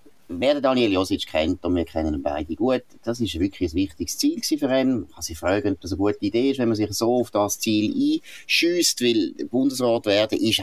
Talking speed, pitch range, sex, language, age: 225 wpm, 95-125 Hz, male, German, 30-49